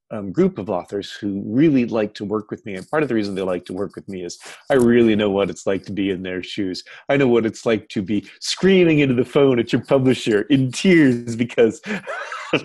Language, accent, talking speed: English, American, 245 wpm